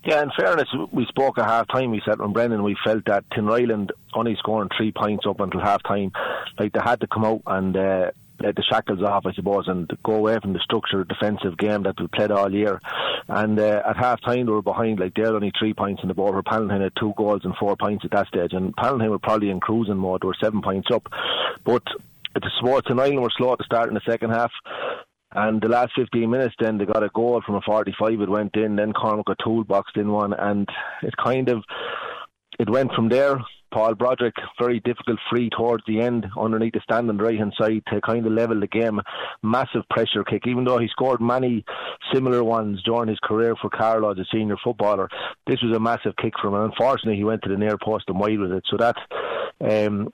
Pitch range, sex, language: 100-115 Hz, male, English